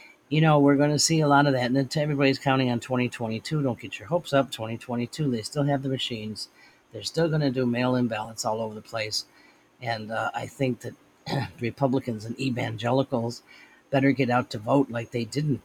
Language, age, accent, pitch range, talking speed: English, 40-59, American, 120-140 Hz, 205 wpm